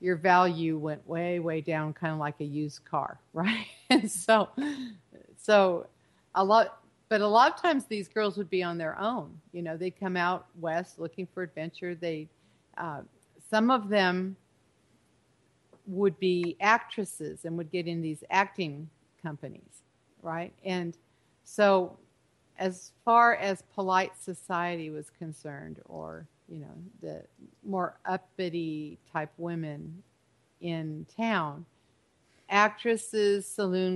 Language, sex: English, female